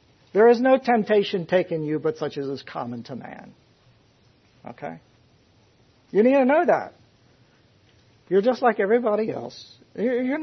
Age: 60-79